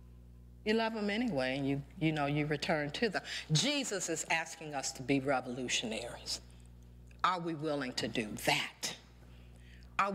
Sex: female